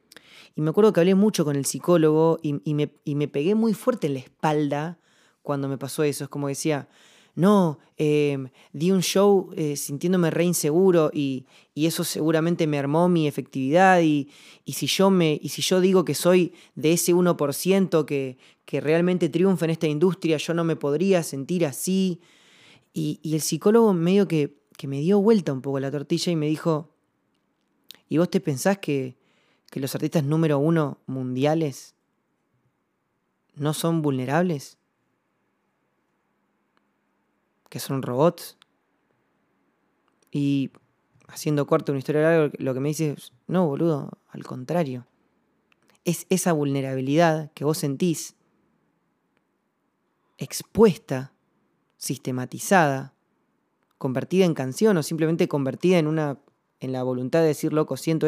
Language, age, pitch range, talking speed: Spanish, 20-39, 145-175 Hz, 140 wpm